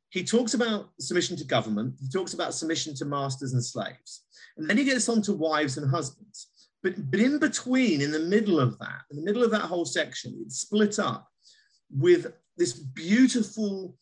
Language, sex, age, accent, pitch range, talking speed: English, male, 40-59, British, 135-190 Hz, 195 wpm